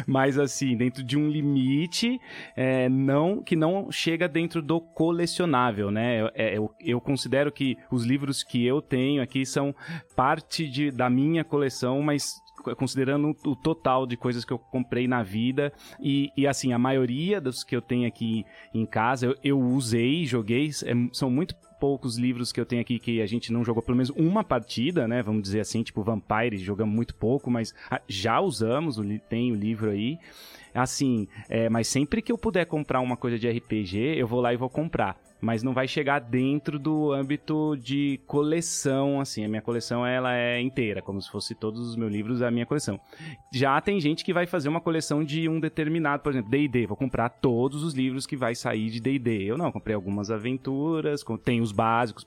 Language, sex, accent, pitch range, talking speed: Portuguese, male, Brazilian, 120-150 Hz, 185 wpm